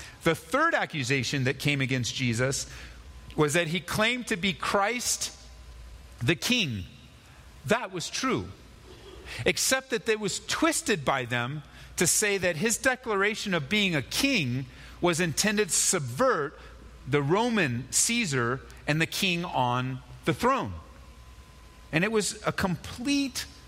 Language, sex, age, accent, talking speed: English, male, 40-59, American, 135 wpm